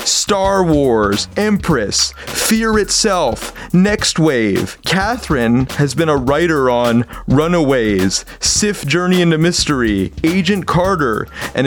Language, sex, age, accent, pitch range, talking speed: English, male, 30-49, American, 135-180 Hz, 110 wpm